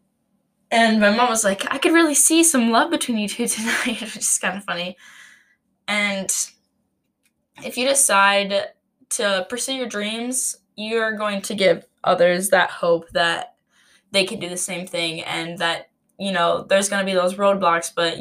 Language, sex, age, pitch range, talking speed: English, female, 10-29, 185-235 Hz, 175 wpm